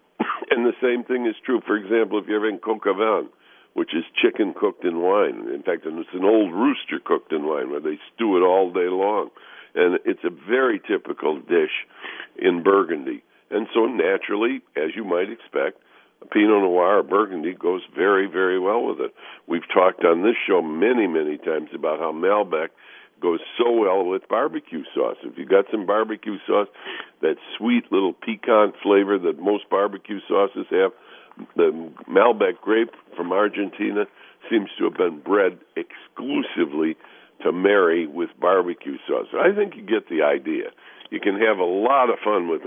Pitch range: 325-435 Hz